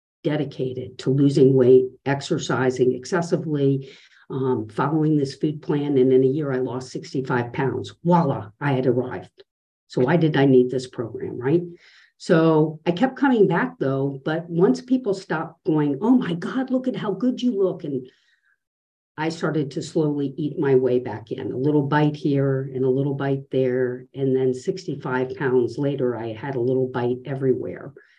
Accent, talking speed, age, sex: American, 170 wpm, 50-69, female